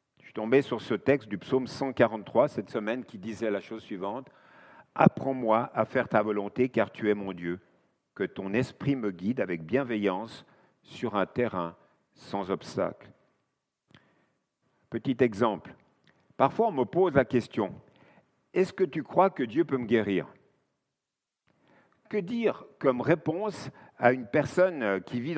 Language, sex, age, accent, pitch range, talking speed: French, male, 50-69, French, 110-155 Hz, 145 wpm